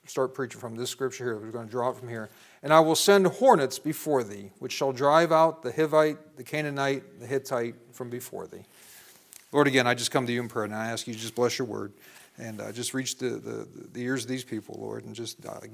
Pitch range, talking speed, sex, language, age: 125-165 Hz, 250 wpm, male, English, 40-59